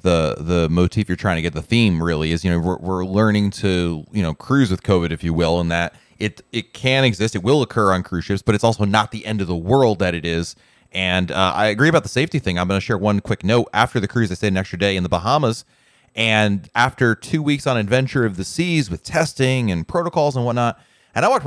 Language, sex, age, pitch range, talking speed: English, male, 30-49, 95-125 Hz, 255 wpm